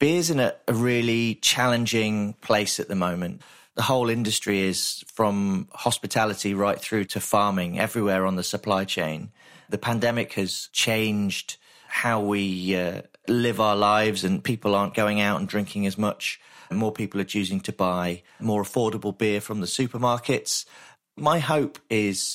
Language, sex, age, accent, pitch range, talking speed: English, male, 30-49, British, 100-115 Hz, 160 wpm